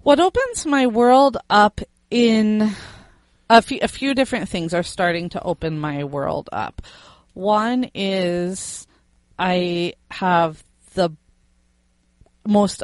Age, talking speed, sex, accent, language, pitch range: 30-49, 110 wpm, female, American, English, 155-185 Hz